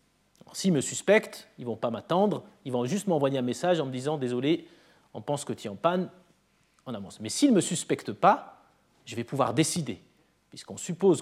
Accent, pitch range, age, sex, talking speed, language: French, 135-200 Hz, 40-59, male, 210 wpm, French